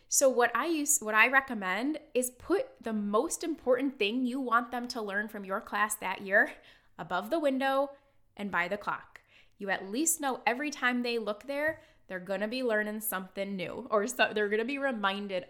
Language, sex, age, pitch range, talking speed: English, female, 10-29, 205-265 Hz, 200 wpm